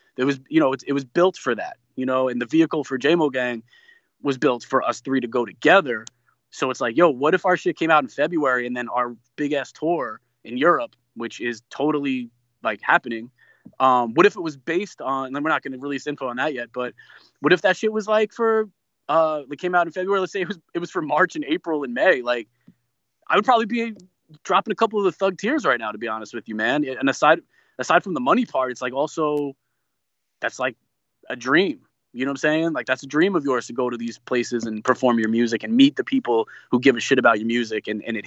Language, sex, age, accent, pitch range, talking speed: English, male, 20-39, American, 125-165 Hz, 255 wpm